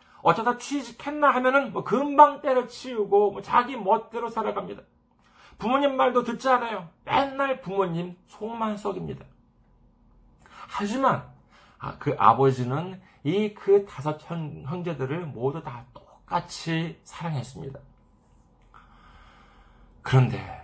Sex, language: male, Korean